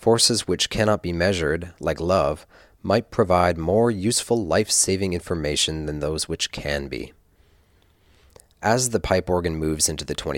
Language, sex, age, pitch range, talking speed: English, male, 40-59, 80-105 Hz, 145 wpm